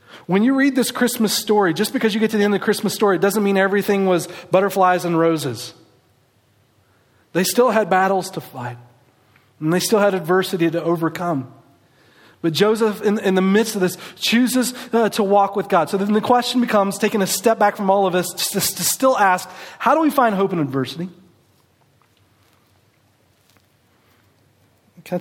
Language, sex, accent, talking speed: English, male, American, 185 wpm